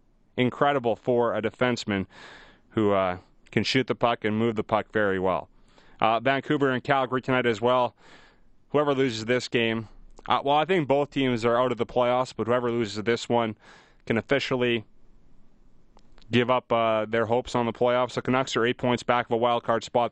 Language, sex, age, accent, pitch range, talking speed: English, male, 30-49, American, 115-145 Hz, 190 wpm